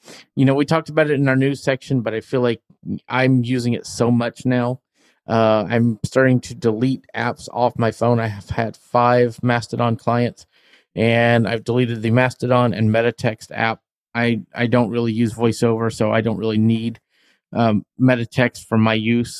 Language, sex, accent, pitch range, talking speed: English, male, American, 115-135 Hz, 185 wpm